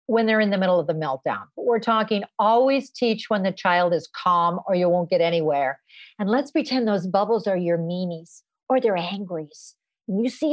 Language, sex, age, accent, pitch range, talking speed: English, female, 50-69, American, 210-305 Hz, 205 wpm